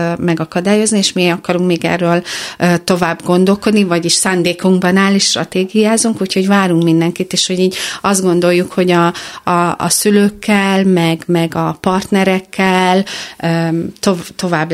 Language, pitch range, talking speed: Hungarian, 170-190 Hz, 120 wpm